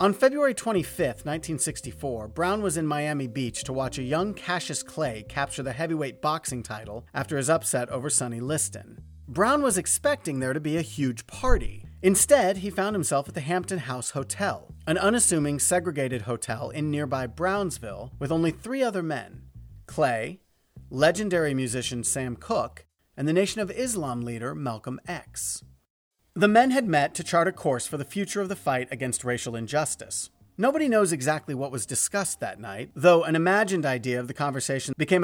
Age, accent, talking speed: 40-59, American, 175 wpm